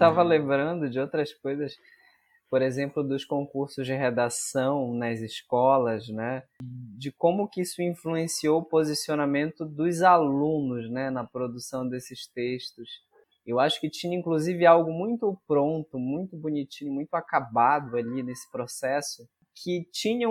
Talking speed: 135 wpm